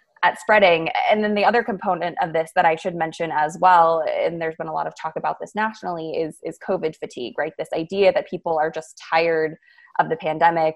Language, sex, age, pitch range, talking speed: English, female, 20-39, 160-180 Hz, 220 wpm